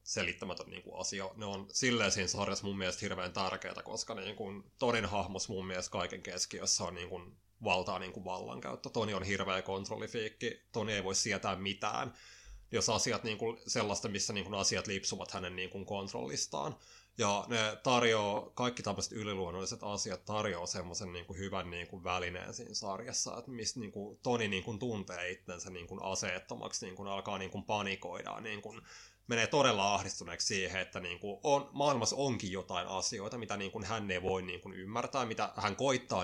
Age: 20-39